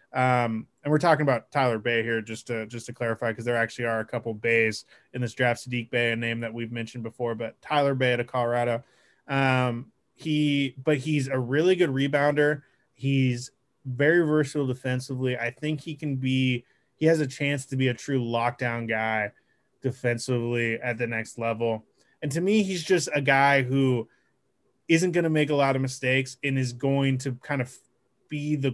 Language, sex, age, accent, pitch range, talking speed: English, male, 20-39, American, 120-135 Hz, 195 wpm